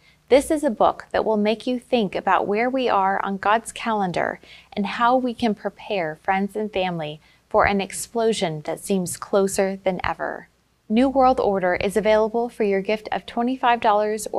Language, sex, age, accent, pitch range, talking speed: English, female, 20-39, American, 185-230 Hz, 175 wpm